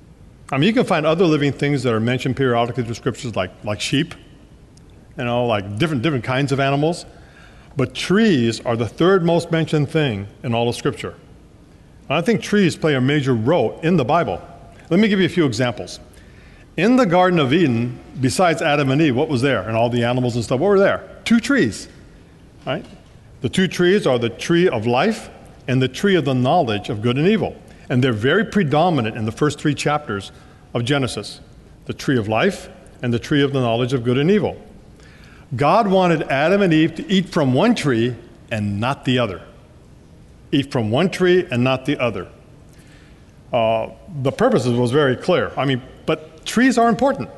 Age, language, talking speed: 50-69, English, 200 wpm